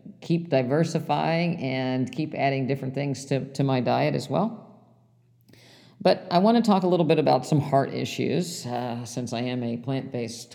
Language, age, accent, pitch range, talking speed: English, 50-69, American, 130-155 Hz, 175 wpm